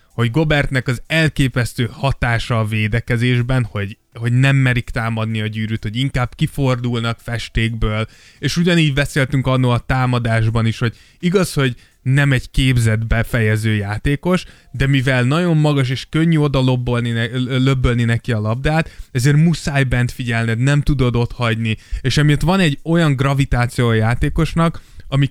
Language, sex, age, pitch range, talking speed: Hungarian, male, 20-39, 115-145 Hz, 145 wpm